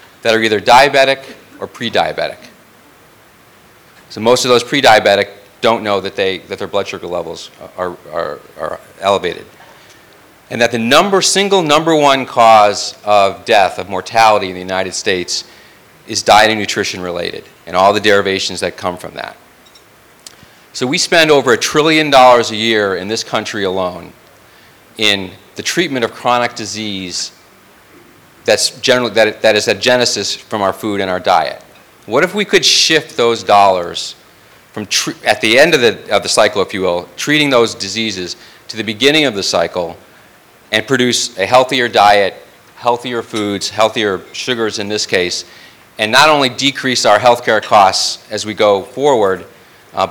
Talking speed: 165 wpm